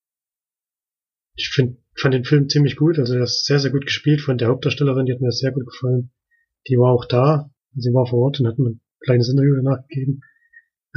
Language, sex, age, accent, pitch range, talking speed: German, male, 30-49, German, 120-135 Hz, 215 wpm